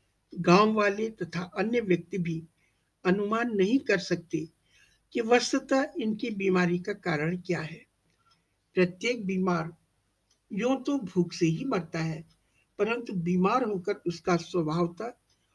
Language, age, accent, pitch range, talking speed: Hindi, 60-79, native, 160-210 Hz, 120 wpm